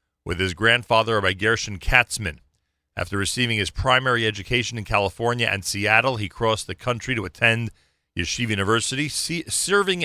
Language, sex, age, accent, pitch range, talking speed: English, male, 40-59, American, 100-120 Hz, 150 wpm